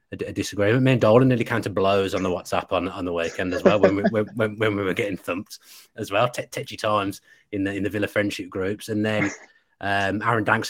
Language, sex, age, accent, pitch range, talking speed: English, male, 30-49, British, 95-110 Hz, 240 wpm